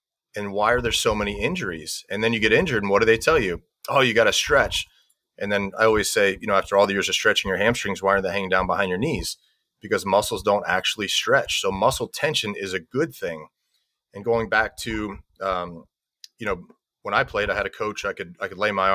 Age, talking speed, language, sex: 30-49, 245 wpm, English, male